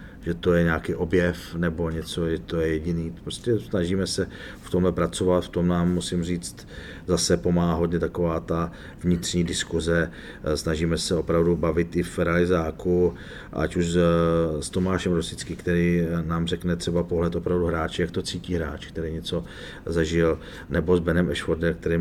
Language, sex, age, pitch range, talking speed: Czech, male, 40-59, 80-90 Hz, 165 wpm